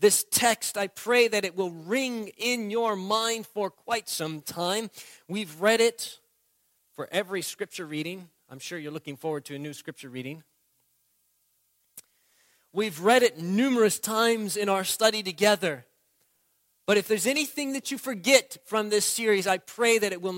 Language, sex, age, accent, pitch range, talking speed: English, male, 40-59, American, 140-230 Hz, 165 wpm